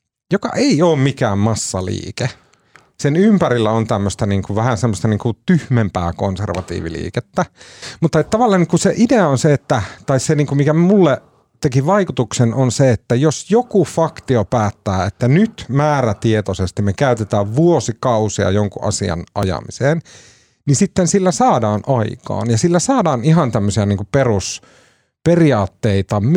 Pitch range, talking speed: 105-155 Hz, 145 wpm